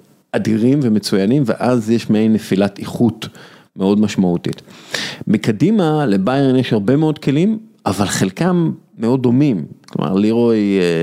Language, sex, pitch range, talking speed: Hebrew, male, 95-120 Hz, 115 wpm